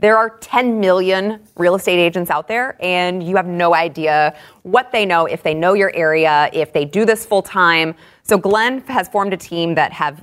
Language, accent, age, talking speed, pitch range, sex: English, American, 20-39, 210 wpm, 150-190 Hz, female